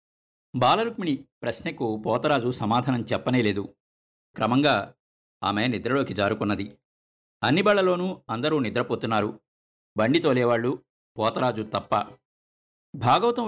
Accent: native